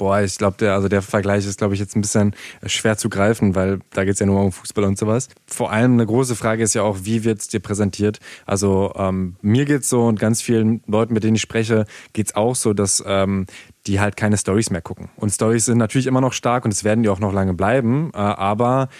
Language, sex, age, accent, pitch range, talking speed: German, male, 20-39, German, 100-120 Hz, 250 wpm